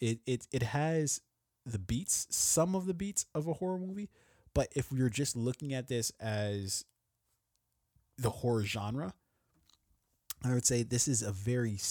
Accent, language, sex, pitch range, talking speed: American, English, male, 100-125 Hz, 165 wpm